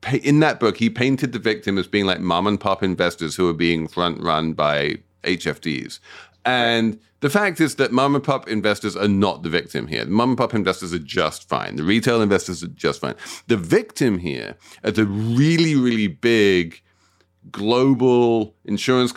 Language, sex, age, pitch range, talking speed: English, male, 40-59, 95-125 Hz, 180 wpm